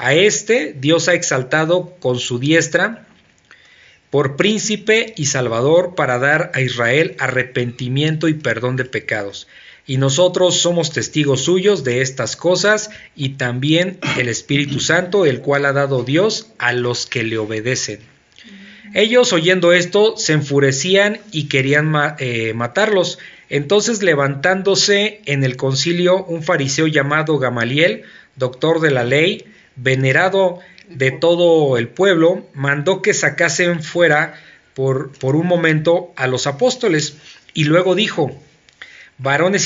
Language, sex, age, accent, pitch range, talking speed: Spanish, male, 40-59, Mexican, 135-180 Hz, 130 wpm